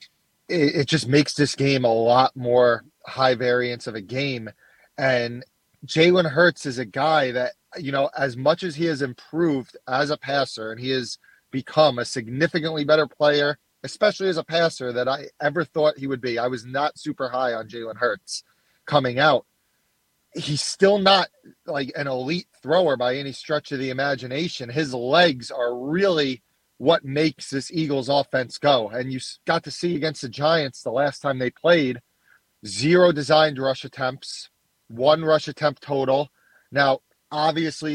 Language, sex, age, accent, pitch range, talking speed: English, male, 30-49, American, 130-155 Hz, 170 wpm